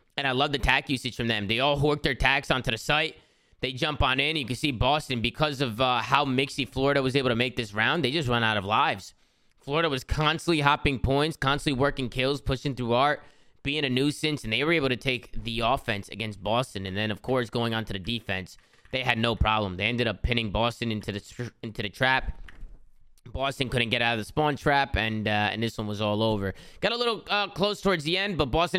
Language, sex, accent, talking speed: English, male, American, 240 wpm